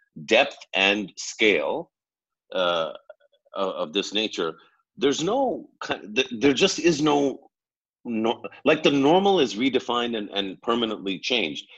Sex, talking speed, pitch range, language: male, 115 wpm, 95-130 Hz, English